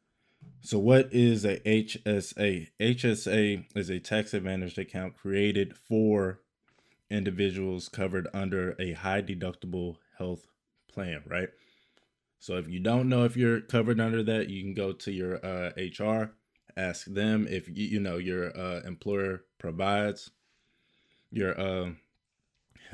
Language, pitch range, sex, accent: English, 90-105 Hz, male, American